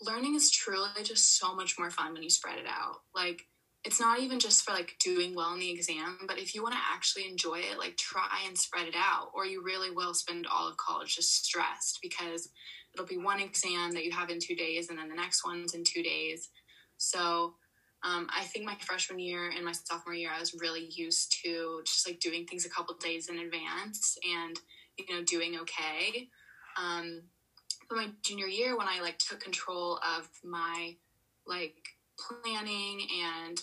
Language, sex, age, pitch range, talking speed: English, female, 20-39, 170-190 Hz, 200 wpm